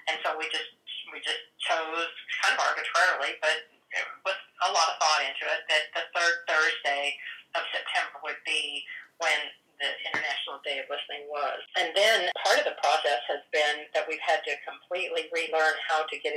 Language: English